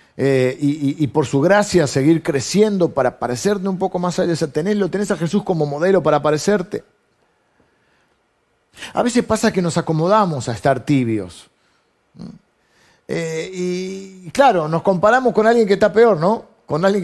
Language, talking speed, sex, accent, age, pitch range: Spanish, 165 wpm, male, Argentinian, 50-69, 150-215 Hz